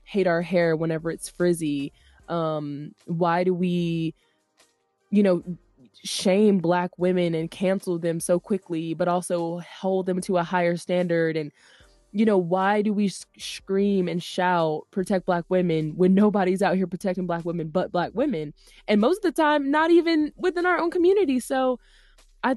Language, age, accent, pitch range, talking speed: English, 20-39, American, 170-195 Hz, 170 wpm